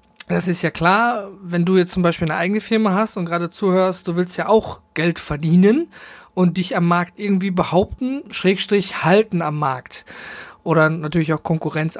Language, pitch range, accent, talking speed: German, 170-215 Hz, German, 180 wpm